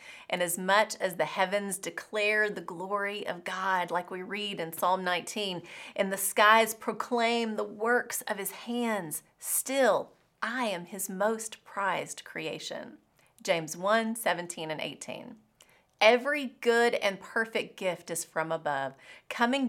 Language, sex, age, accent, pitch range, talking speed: English, female, 30-49, American, 170-230 Hz, 145 wpm